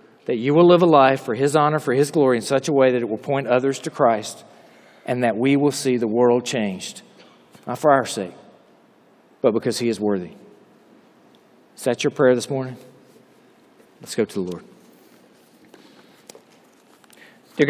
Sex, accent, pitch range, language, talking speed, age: male, American, 120-145 Hz, English, 175 wpm, 40-59